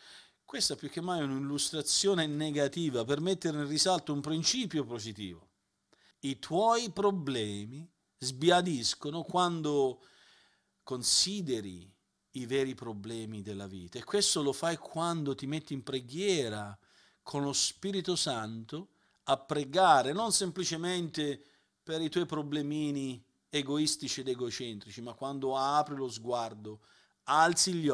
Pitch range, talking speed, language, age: 120-165 Hz, 120 wpm, Italian, 40-59